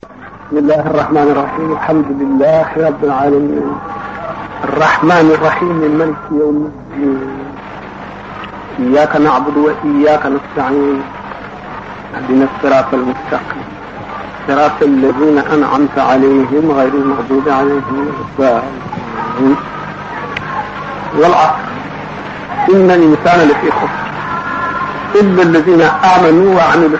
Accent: Lebanese